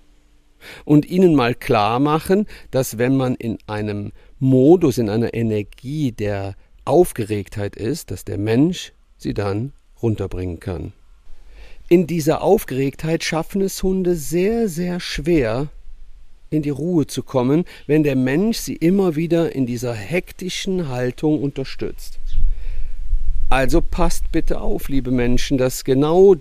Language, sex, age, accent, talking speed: German, male, 50-69, German, 130 wpm